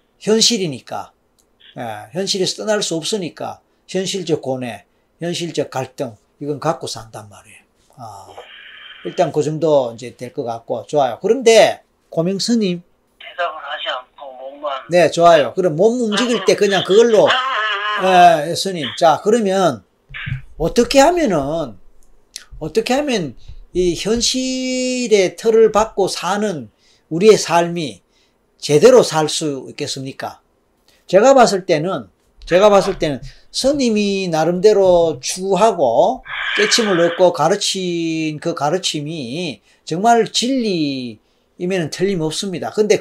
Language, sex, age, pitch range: Korean, male, 40-59, 150-220 Hz